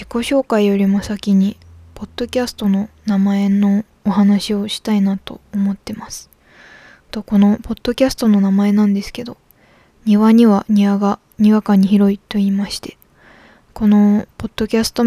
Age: 20-39